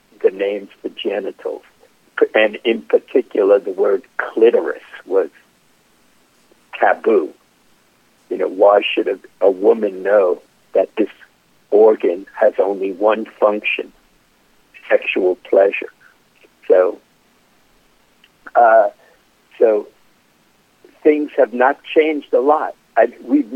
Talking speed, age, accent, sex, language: 100 wpm, 60-79, American, male, English